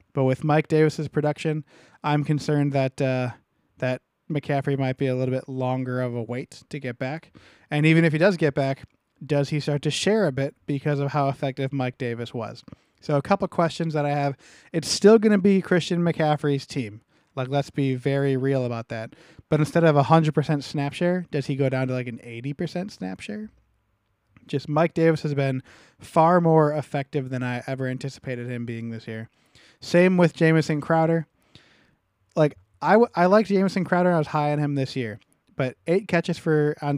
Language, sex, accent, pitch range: English, male, American, 130-160 Hz